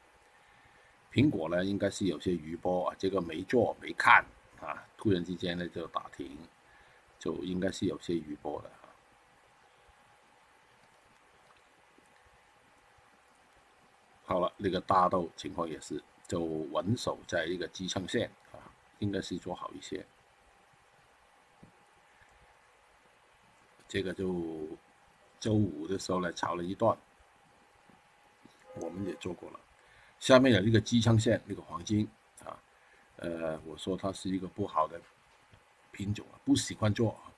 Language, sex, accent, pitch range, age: Chinese, male, native, 70-100 Hz, 60-79